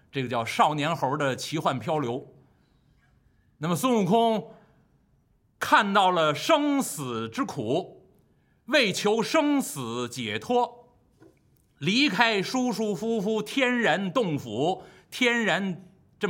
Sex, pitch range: male, 130-200 Hz